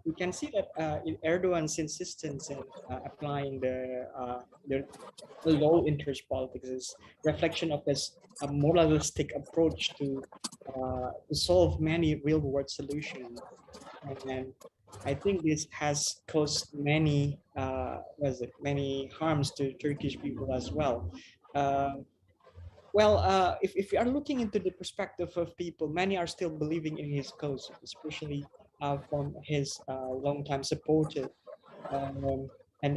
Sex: male